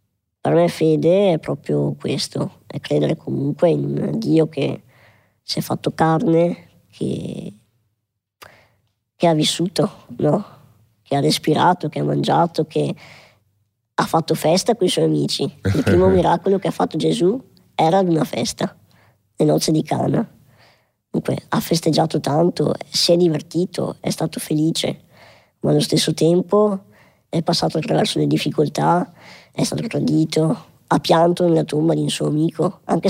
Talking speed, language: 150 wpm, Italian